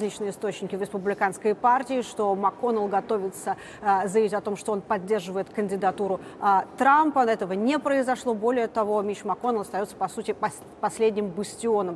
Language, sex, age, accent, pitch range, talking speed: Russian, female, 30-49, native, 195-225 Hz, 140 wpm